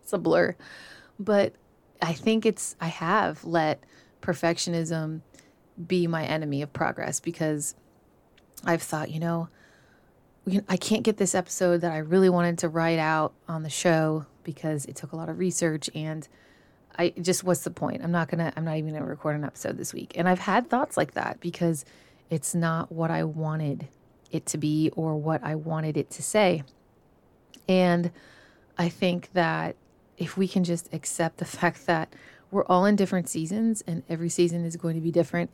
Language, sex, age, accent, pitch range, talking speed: English, female, 30-49, American, 160-180 Hz, 185 wpm